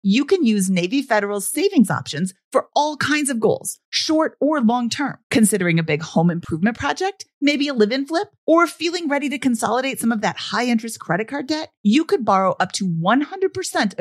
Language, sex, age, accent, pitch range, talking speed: English, female, 40-59, American, 190-285 Hz, 185 wpm